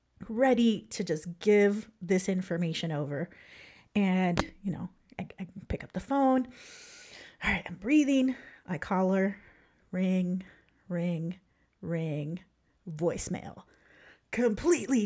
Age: 30-49